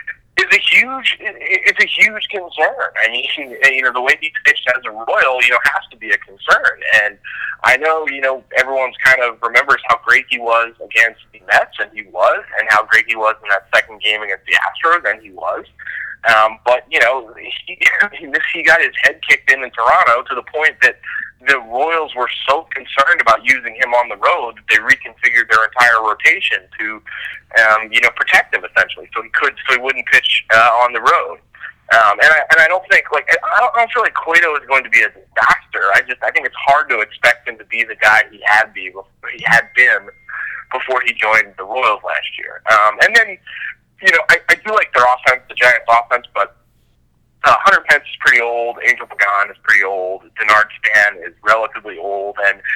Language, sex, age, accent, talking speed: English, male, 30-49, American, 215 wpm